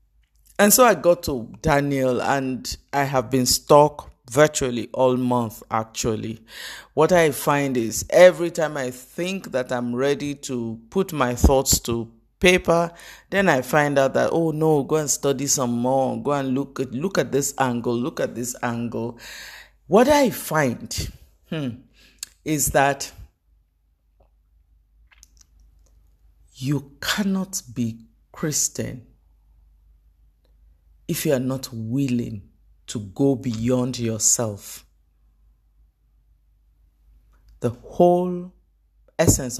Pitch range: 115-145 Hz